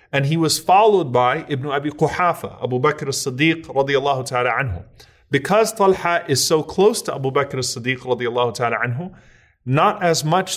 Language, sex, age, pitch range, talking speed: English, male, 30-49, 130-170 Hz, 165 wpm